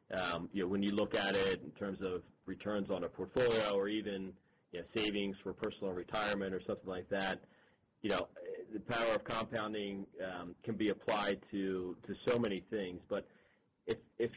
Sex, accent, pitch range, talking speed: male, American, 95-110 Hz, 190 wpm